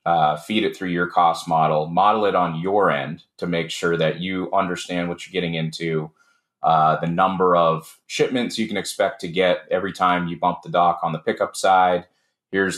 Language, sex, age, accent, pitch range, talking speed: English, male, 30-49, American, 85-95 Hz, 200 wpm